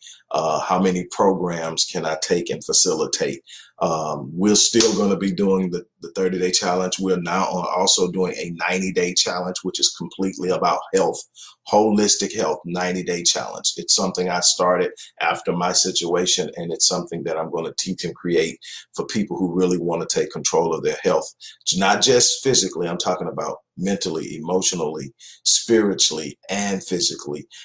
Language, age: English, 40-59